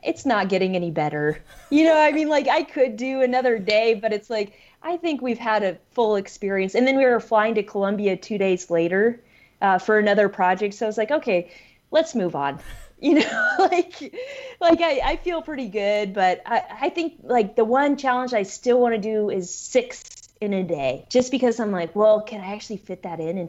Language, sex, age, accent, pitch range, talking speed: English, female, 20-39, American, 180-235 Hz, 220 wpm